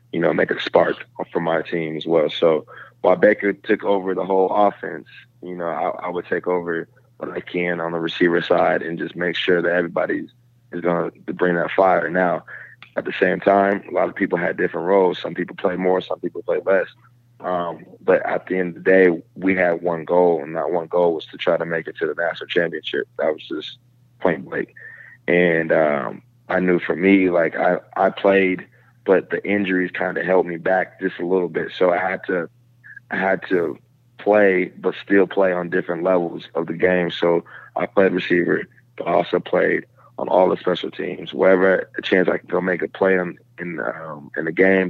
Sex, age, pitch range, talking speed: male, 20-39, 85-115 Hz, 220 wpm